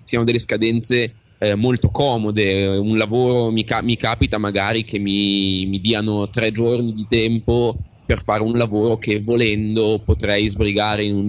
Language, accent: Italian, native